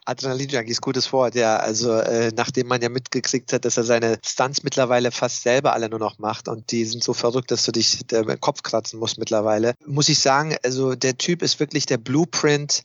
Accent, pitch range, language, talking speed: German, 115-130 Hz, German, 220 wpm